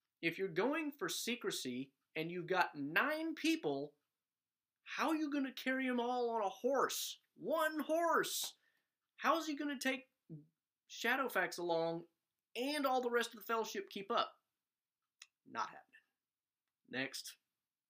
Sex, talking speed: male, 145 wpm